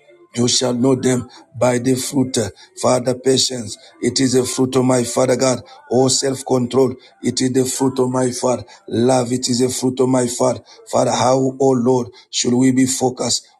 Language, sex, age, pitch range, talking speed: English, male, 50-69, 125-130 Hz, 185 wpm